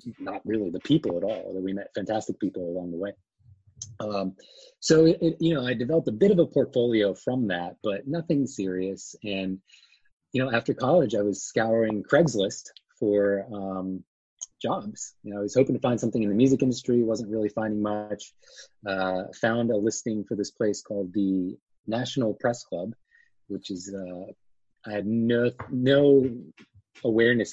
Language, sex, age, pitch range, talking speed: English, male, 30-49, 100-130 Hz, 170 wpm